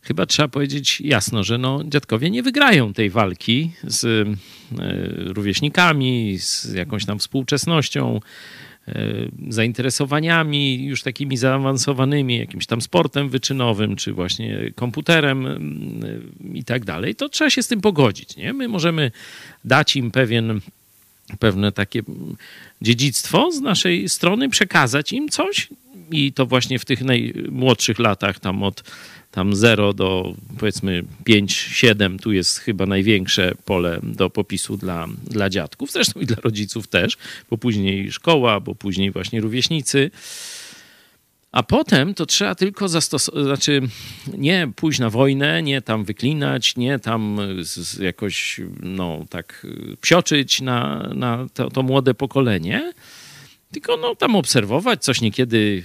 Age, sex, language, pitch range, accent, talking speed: 40-59, male, Polish, 105-145 Hz, native, 130 wpm